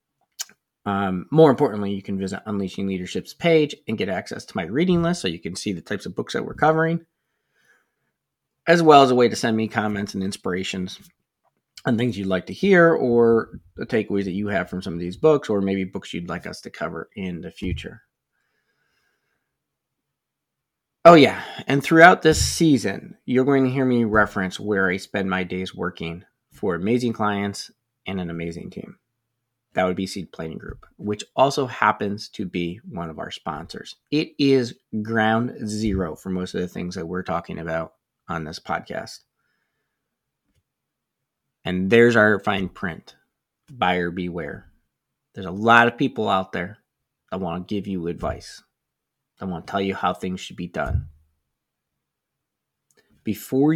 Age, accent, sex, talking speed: 30-49, American, male, 170 wpm